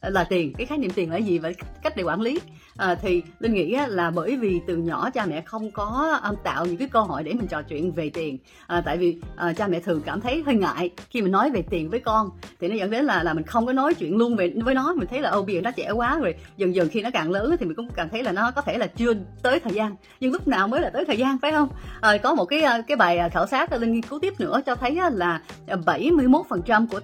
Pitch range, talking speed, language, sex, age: 175-265 Hz, 280 wpm, Vietnamese, female, 20-39